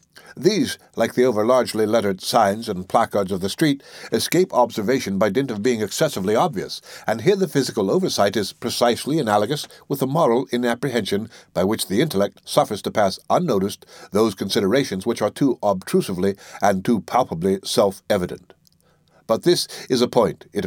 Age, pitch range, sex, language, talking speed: 60-79, 100-140 Hz, male, English, 160 wpm